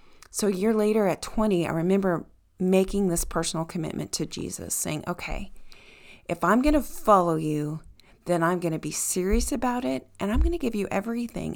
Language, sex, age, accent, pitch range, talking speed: English, female, 40-59, American, 160-200 Hz, 190 wpm